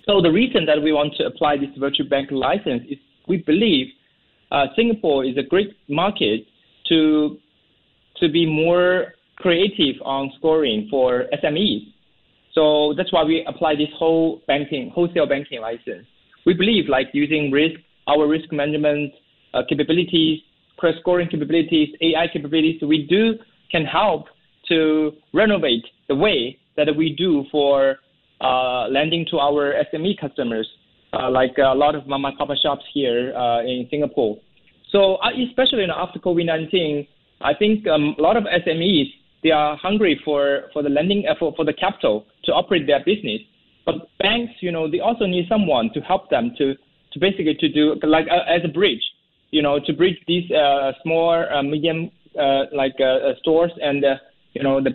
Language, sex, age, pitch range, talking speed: English, male, 20-39, 140-175 Hz, 170 wpm